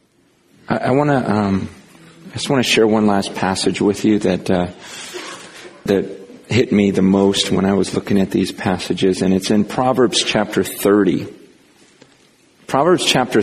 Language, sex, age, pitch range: Korean, male, 40-59, 100-130 Hz